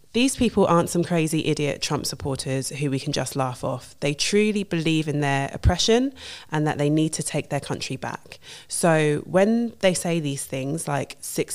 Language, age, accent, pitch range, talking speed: English, 20-39, British, 150-180 Hz, 190 wpm